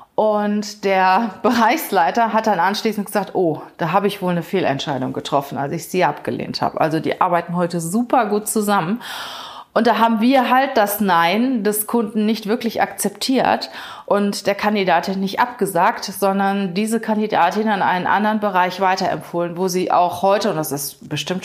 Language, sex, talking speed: German, female, 170 wpm